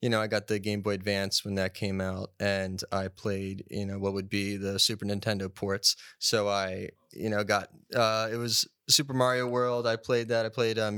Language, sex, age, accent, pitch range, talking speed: English, male, 20-39, American, 100-120 Hz, 225 wpm